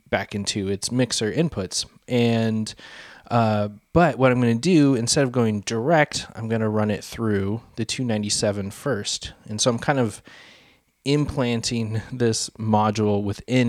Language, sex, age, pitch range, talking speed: English, male, 20-39, 100-125 Hz, 145 wpm